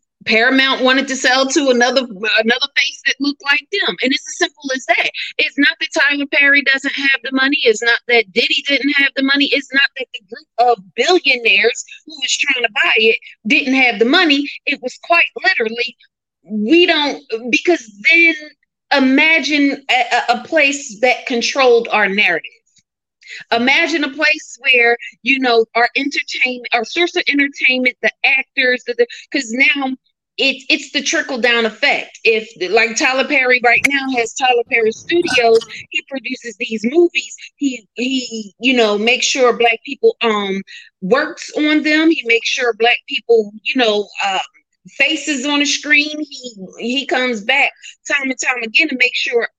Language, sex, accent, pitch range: English, female, American, 240-305 Hz